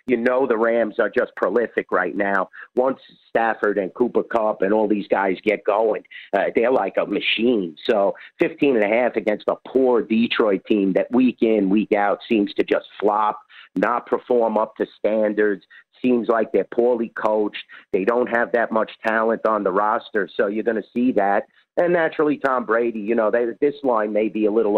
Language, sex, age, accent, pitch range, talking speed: English, male, 50-69, American, 105-125 Hz, 200 wpm